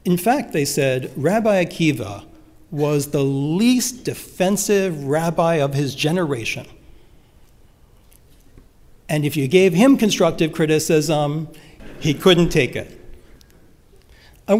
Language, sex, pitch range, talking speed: English, male, 135-185 Hz, 105 wpm